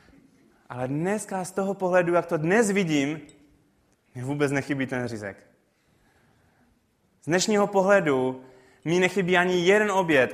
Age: 20-39